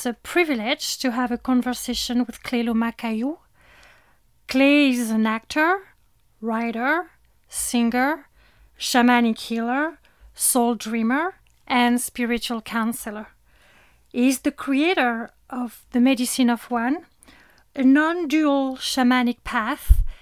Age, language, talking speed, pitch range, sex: 30-49, English, 110 wpm, 240-280 Hz, female